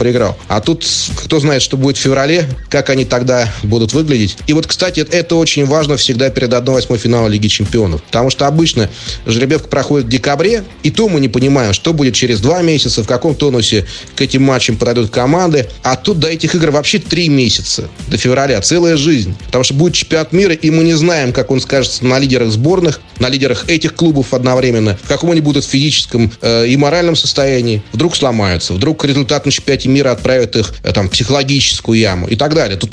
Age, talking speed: 30-49, 195 wpm